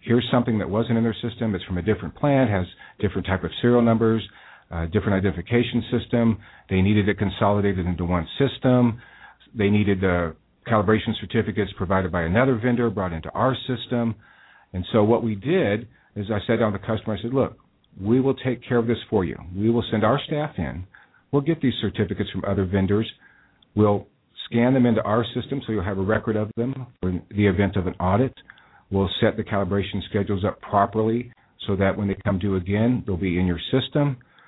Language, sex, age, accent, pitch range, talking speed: English, male, 50-69, American, 95-120 Hz, 200 wpm